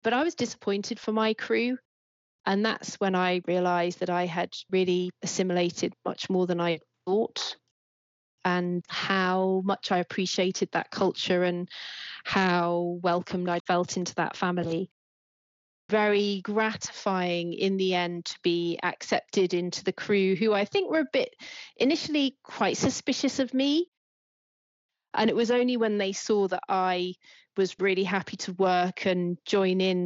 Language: English